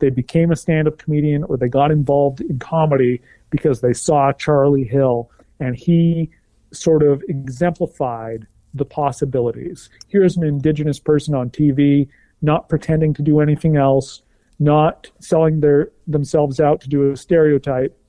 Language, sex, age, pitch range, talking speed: English, male, 40-59, 130-155 Hz, 145 wpm